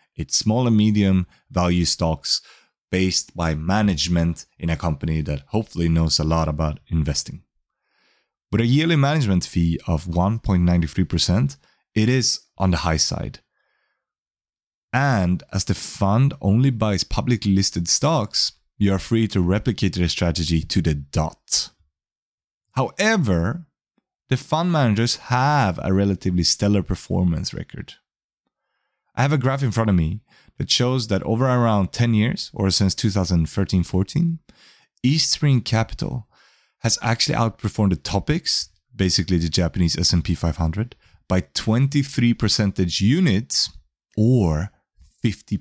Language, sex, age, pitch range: English, male, 30-49, 85-115 Hz